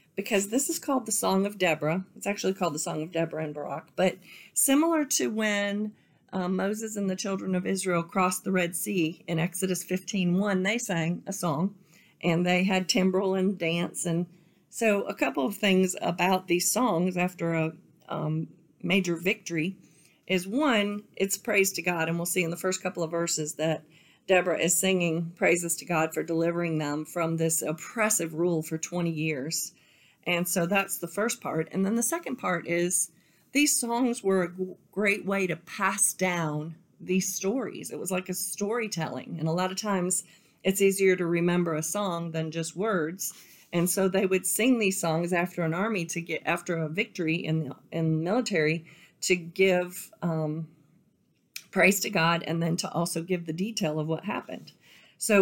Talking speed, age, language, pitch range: 185 wpm, 40-59, English, 165-195 Hz